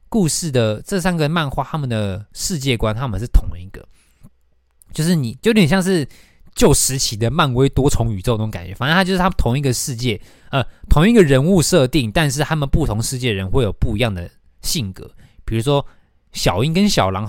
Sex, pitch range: male, 105-150 Hz